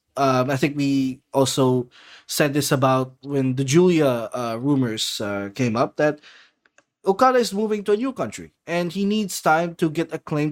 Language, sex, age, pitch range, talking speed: English, male, 20-39, 140-190 Hz, 185 wpm